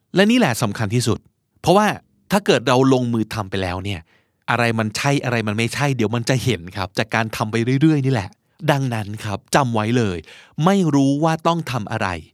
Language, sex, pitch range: Thai, male, 110-145 Hz